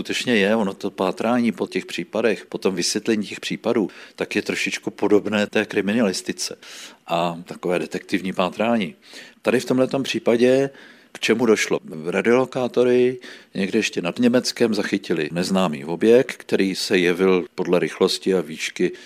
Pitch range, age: 90-105 Hz, 50-69